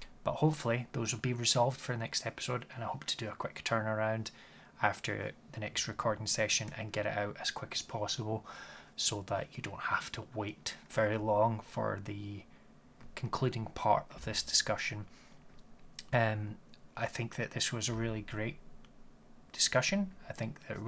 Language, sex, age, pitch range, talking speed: English, male, 20-39, 105-115 Hz, 170 wpm